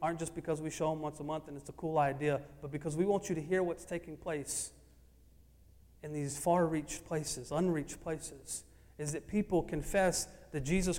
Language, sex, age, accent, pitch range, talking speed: English, male, 40-59, American, 135-165 Hz, 195 wpm